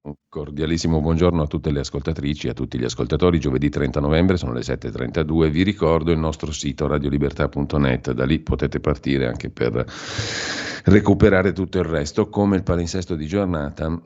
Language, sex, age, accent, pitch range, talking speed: Italian, male, 50-69, native, 70-85 Hz, 165 wpm